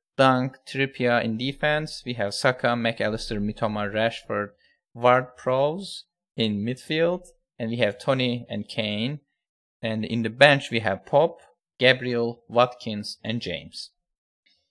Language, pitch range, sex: English, 115-150 Hz, male